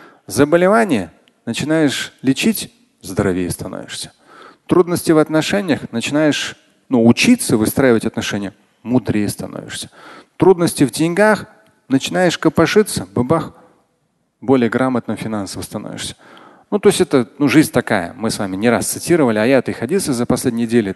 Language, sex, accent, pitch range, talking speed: Russian, male, native, 115-165 Hz, 130 wpm